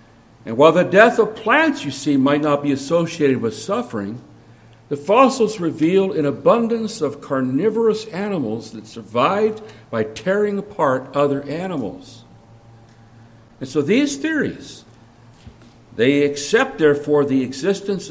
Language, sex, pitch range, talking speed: English, male, 125-205 Hz, 125 wpm